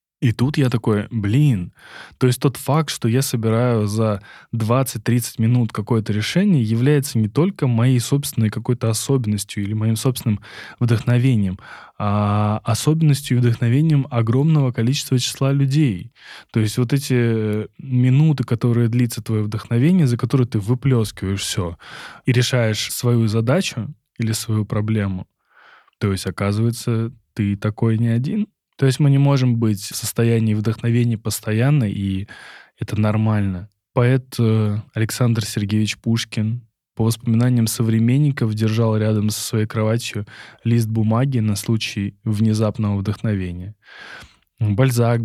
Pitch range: 105-125 Hz